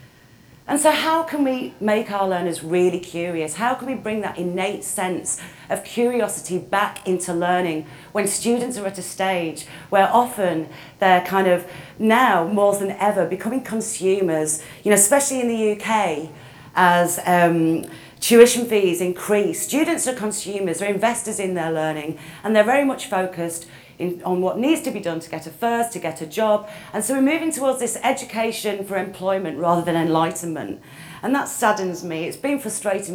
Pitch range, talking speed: 170-220 Hz, 175 wpm